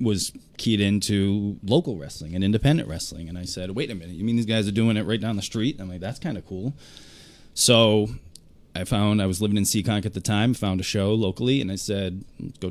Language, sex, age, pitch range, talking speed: English, male, 20-39, 90-110 Hz, 240 wpm